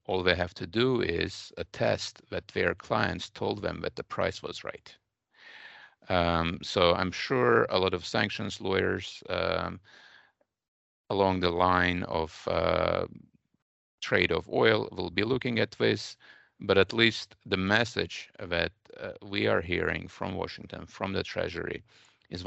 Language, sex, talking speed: English, male, 150 wpm